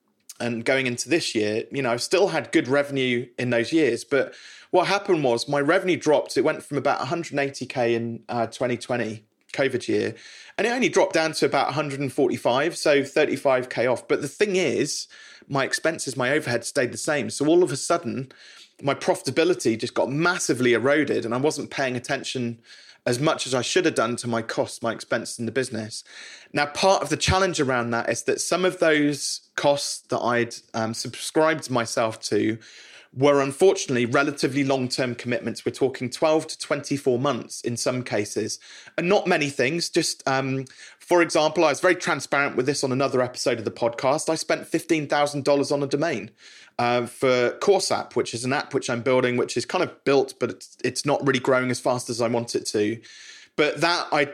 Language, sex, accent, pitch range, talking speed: English, male, British, 120-155 Hz, 195 wpm